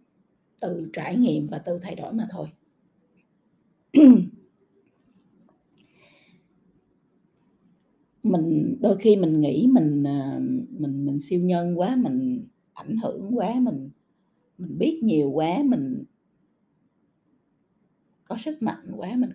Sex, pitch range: female, 170-245 Hz